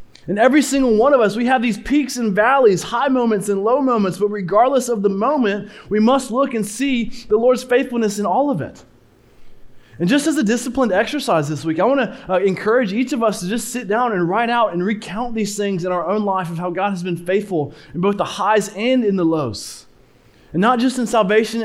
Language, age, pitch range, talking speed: English, 20-39, 195-235 Hz, 235 wpm